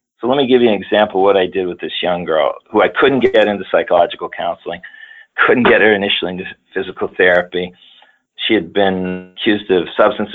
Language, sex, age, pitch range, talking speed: English, male, 40-59, 90-105 Hz, 205 wpm